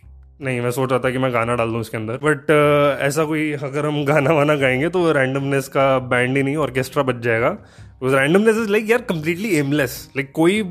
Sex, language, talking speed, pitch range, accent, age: male, Hindi, 225 wpm, 130-180 Hz, native, 20-39